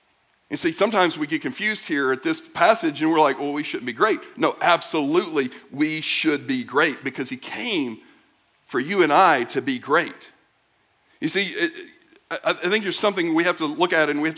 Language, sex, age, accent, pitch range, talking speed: English, male, 50-69, American, 150-215 Hz, 200 wpm